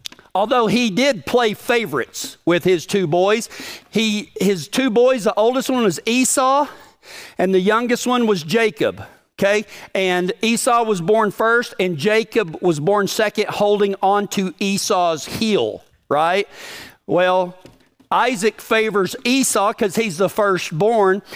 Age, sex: 50-69, male